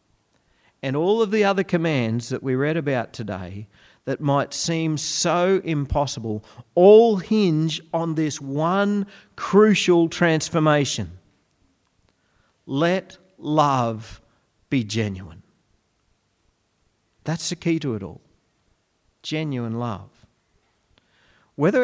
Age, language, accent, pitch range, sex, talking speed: 40-59, English, Australian, 115-165 Hz, male, 100 wpm